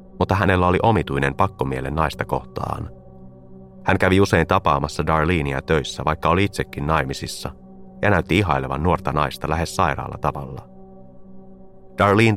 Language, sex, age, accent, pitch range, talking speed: Finnish, male, 30-49, native, 65-100 Hz, 125 wpm